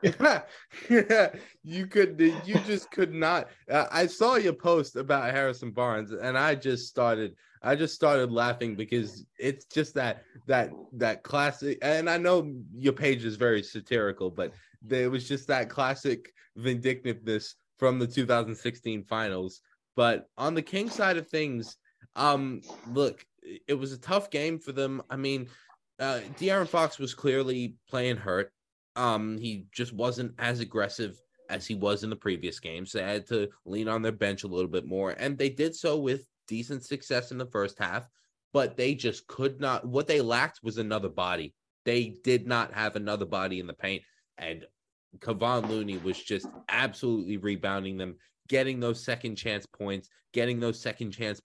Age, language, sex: 20-39, English, male